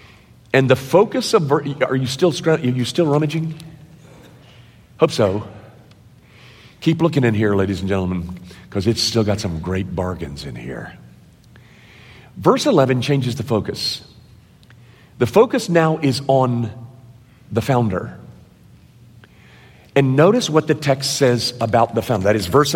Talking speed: 140 wpm